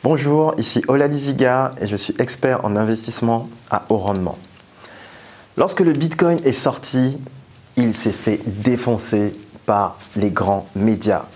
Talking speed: 130 wpm